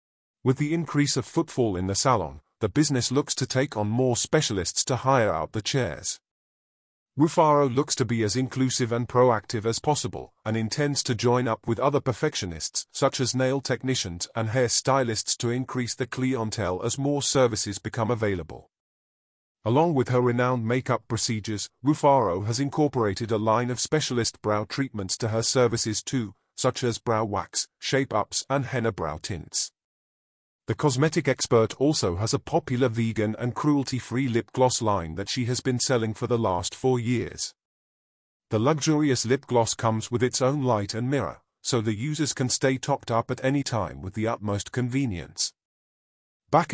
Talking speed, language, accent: 170 wpm, English, British